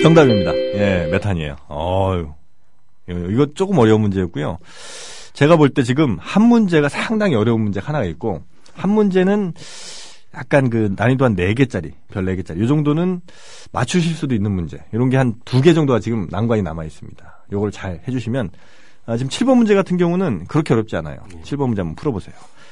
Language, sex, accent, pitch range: Korean, male, native, 100-165 Hz